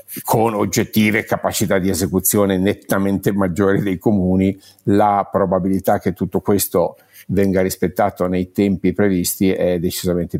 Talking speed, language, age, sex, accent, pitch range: 120 wpm, Italian, 50-69, male, native, 95-105 Hz